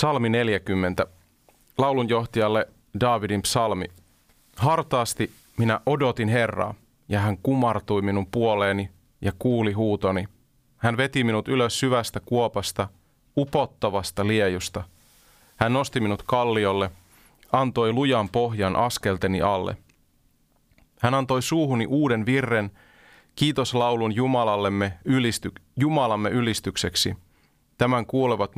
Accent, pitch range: native, 100-125 Hz